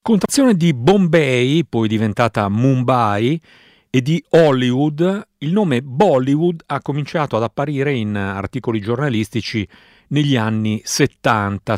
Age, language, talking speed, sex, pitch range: 50-69, Italian, 110 wpm, male, 105-140 Hz